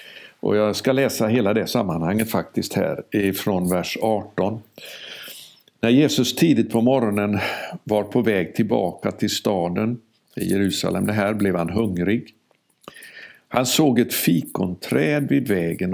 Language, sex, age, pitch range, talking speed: Swedish, male, 60-79, 95-125 Hz, 135 wpm